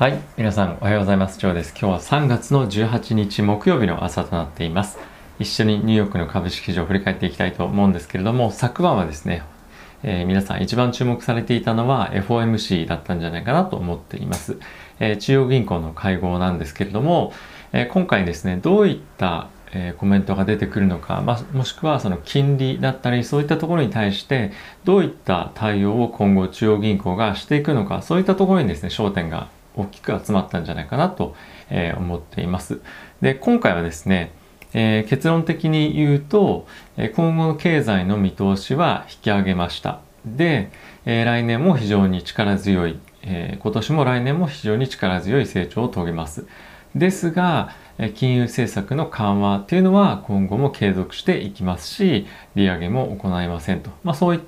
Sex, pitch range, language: male, 95-135 Hz, Japanese